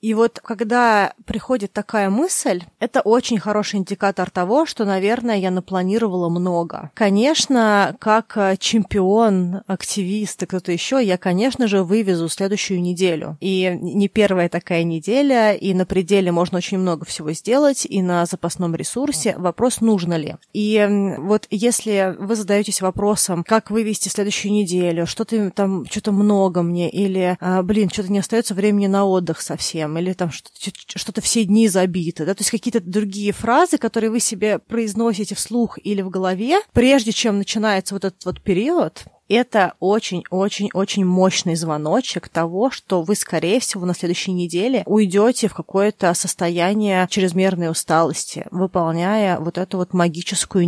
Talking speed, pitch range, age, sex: 150 wpm, 180-215 Hz, 20-39, female